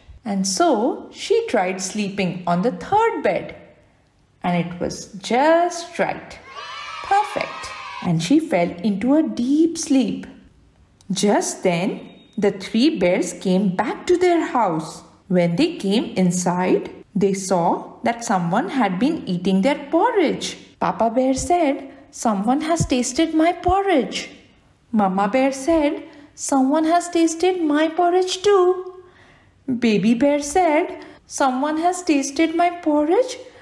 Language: English